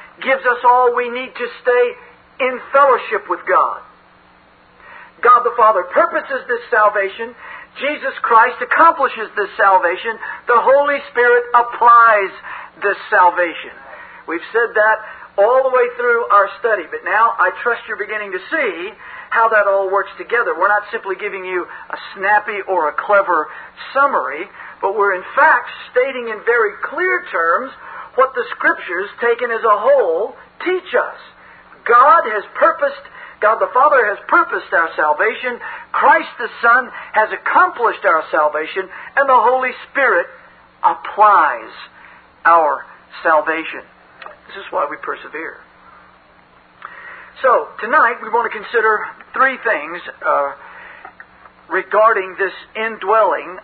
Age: 50-69